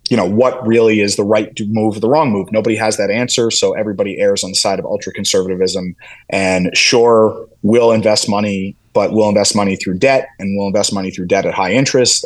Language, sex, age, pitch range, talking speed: English, male, 30-49, 100-120 Hz, 220 wpm